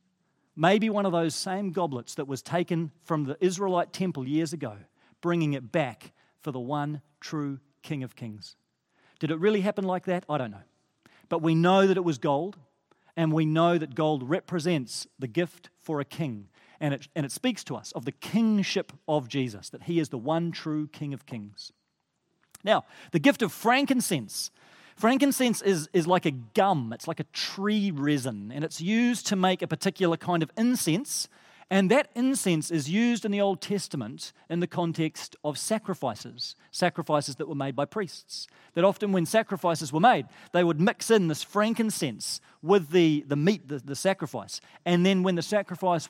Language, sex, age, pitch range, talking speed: English, male, 40-59, 145-195 Hz, 185 wpm